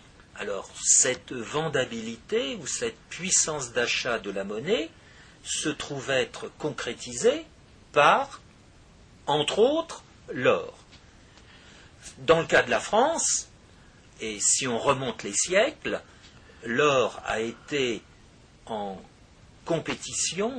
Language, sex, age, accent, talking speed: French, male, 50-69, French, 100 wpm